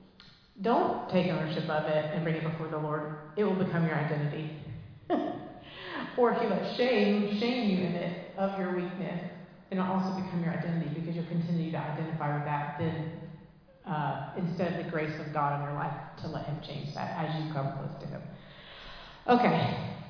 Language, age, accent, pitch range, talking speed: English, 30-49, American, 155-185 Hz, 190 wpm